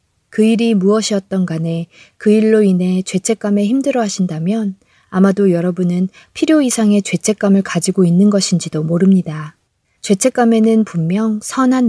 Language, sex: Korean, female